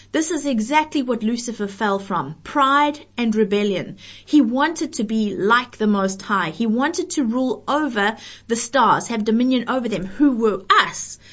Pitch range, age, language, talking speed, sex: 205-275 Hz, 30-49, English, 170 wpm, female